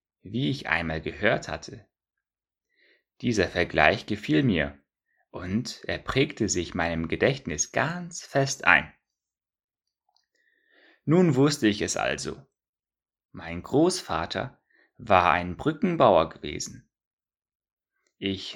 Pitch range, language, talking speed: 85-130 Hz, German, 95 wpm